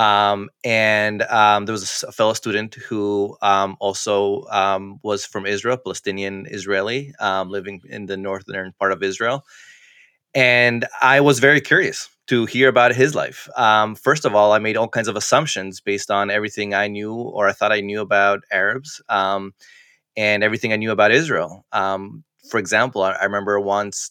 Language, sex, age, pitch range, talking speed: English, male, 20-39, 100-115 Hz, 170 wpm